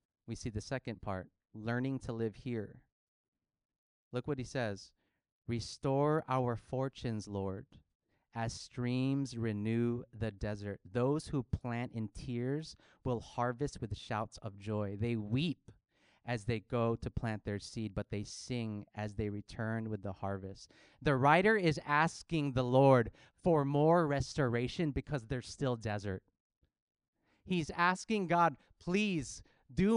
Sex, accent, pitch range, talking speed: male, American, 110-150 Hz, 140 wpm